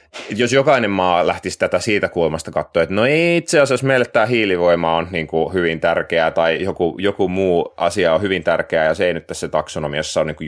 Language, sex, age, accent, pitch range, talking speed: Finnish, male, 30-49, native, 85-105 Hz, 220 wpm